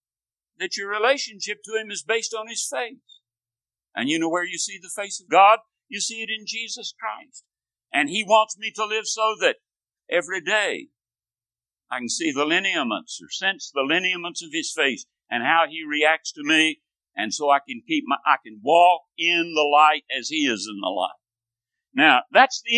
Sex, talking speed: male, 190 wpm